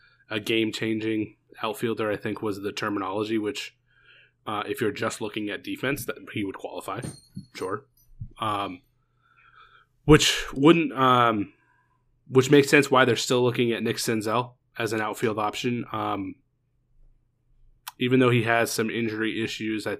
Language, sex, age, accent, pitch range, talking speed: English, male, 20-39, American, 110-125 Hz, 145 wpm